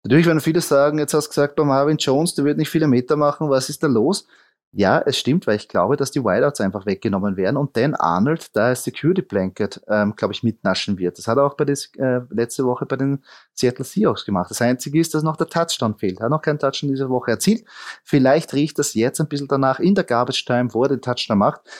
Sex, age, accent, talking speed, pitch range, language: male, 30-49, German, 255 wpm, 110-140 Hz, German